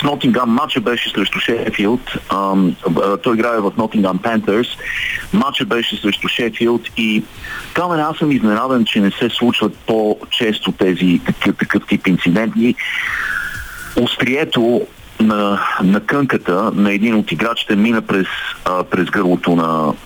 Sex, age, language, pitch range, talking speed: male, 40-59, Bulgarian, 95-115 Hz, 125 wpm